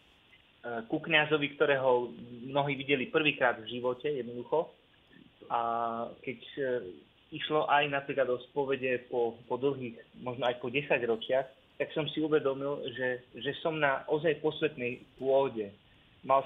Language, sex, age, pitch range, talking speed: Slovak, male, 20-39, 125-155 Hz, 135 wpm